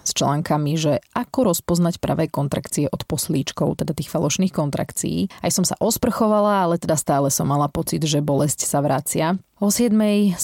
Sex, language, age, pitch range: female, Slovak, 30-49, 155-190 Hz